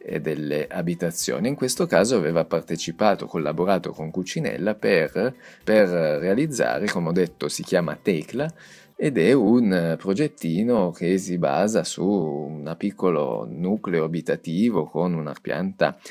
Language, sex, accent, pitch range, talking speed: Italian, male, native, 85-110 Hz, 125 wpm